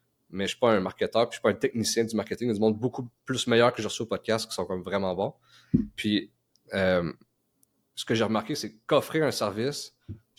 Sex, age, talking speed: male, 30-49, 260 wpm